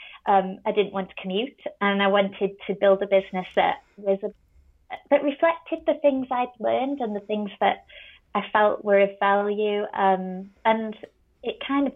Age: 20-39